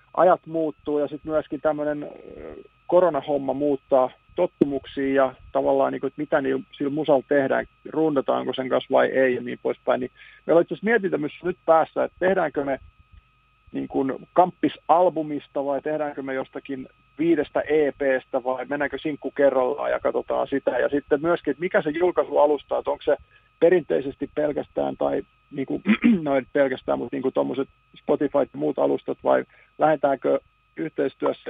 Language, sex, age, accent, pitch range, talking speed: Finnish, male, 50-69, native, 135-165 Hz, 140 wpm